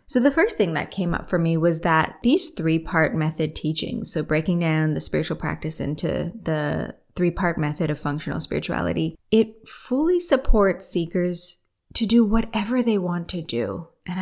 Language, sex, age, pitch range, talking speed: English, female, 20-39, 160-200 Hz, 170 wpm